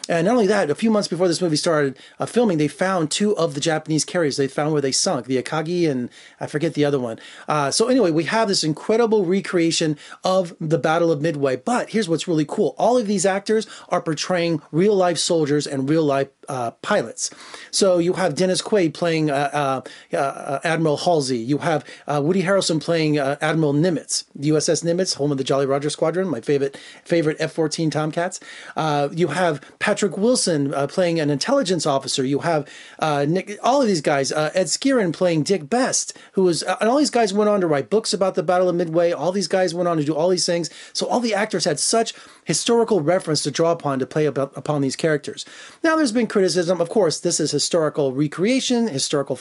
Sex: male